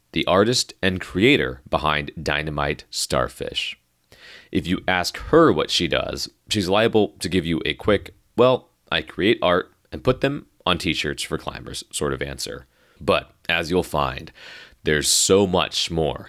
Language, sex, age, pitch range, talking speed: English, male, 30-49, 75-95 Hz, 160 wpm